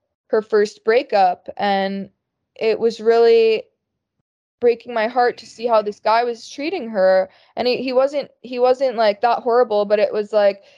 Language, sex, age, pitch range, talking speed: English, female, 20-39, 210-245 Hz, 175 wpm